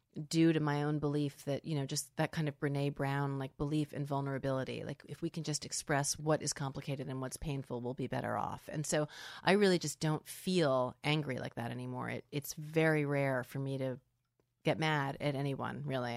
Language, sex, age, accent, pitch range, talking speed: English, female, 30-49, American, 140-170 Hz, 210 wpm